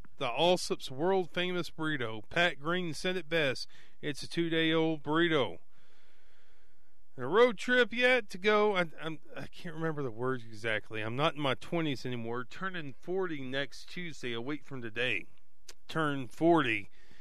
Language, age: English, 40-59